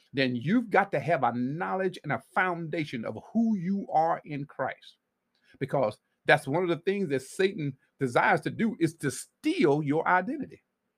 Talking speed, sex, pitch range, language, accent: 175 wpm, male, 140-195 Hz, English, American